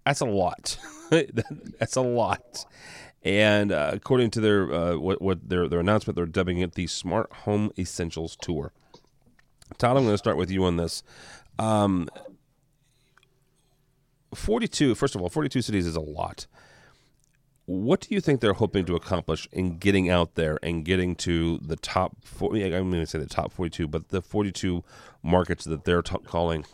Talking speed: 180 wpm